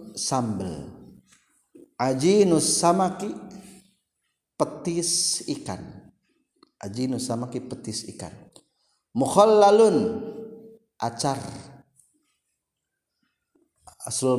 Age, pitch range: 50-69, 130-200 Hz